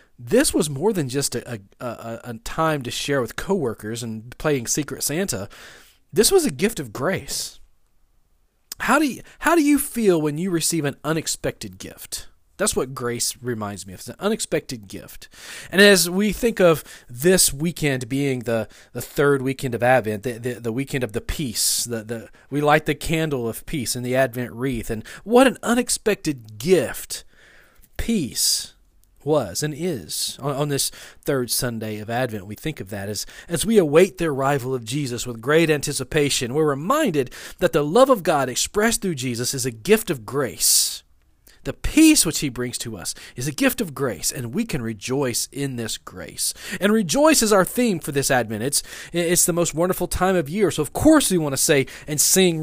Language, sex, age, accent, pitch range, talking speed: English, male, 40-59, American, 120-170 Hz, 190 wpm